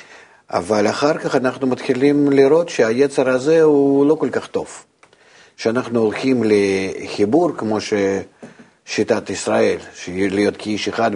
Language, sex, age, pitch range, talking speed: Hebrew, male, 50-69, 105-145 Hz, 120 wpm